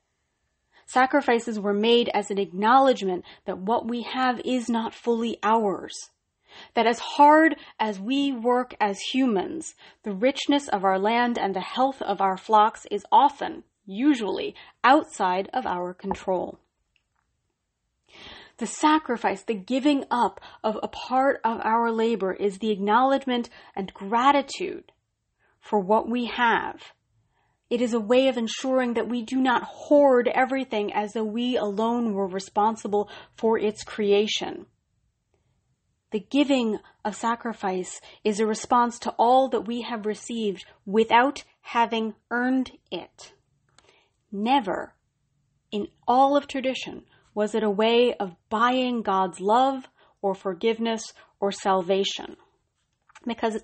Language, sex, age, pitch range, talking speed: English, female, 30-49, 210-265 Hz, 130 wpm